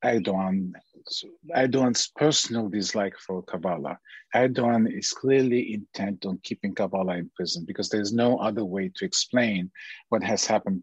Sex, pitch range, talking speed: male, 105-135 Hz, 135 wpm